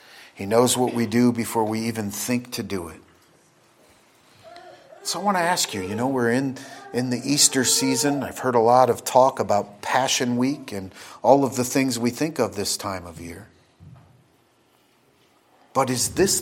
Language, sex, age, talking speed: English, male, 40-59, 185 wpm